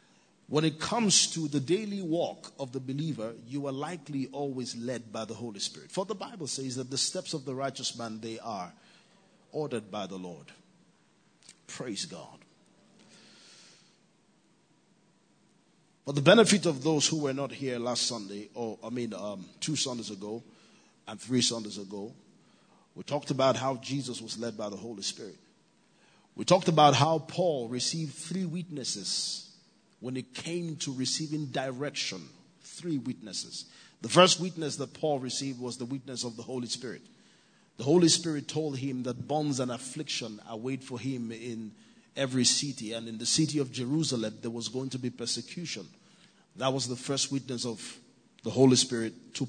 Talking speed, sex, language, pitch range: 165 wpm, male, English, 120-160 Hz